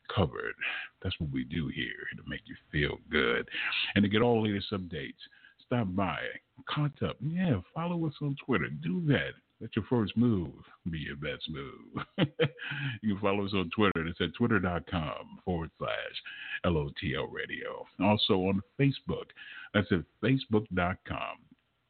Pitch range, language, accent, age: 95-150 Hz, English, American, 50-69